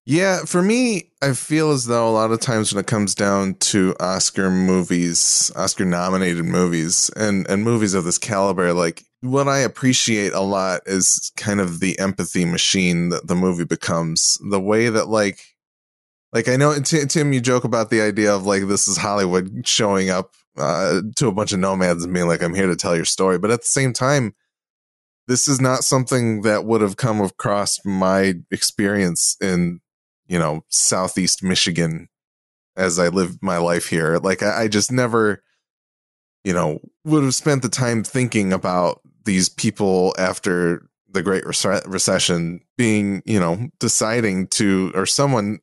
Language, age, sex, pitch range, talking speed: English, 20-39, male, 90-115 Hz, 170 wpm